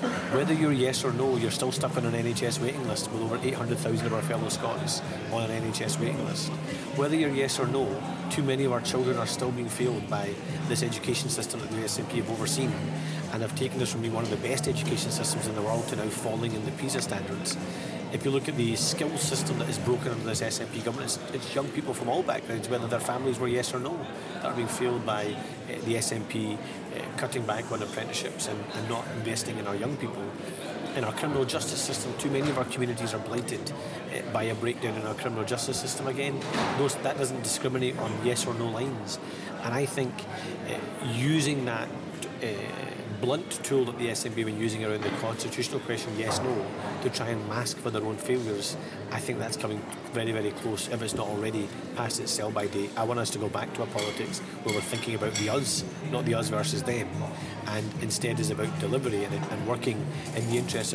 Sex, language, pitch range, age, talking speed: male, English, 115-135 Hz, 40-59, 220 wpm